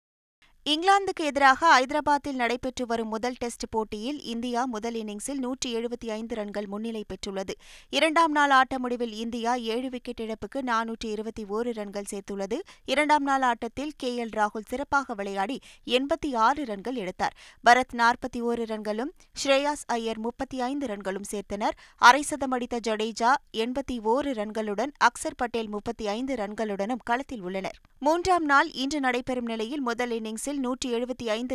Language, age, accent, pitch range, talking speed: Tamil, 20-39, native, 220-275 Hz, 125 wpm